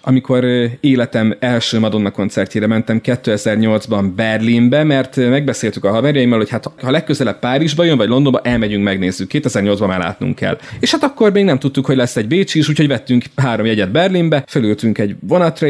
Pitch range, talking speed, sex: 110-145 Hz, 170 wpm, male